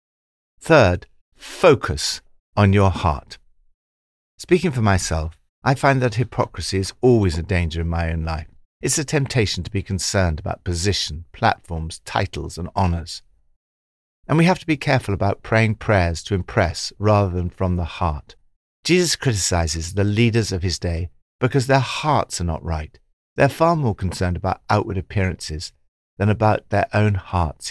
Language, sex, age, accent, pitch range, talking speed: English, male, 50-69, British, 85-110 Hz, 160 wpm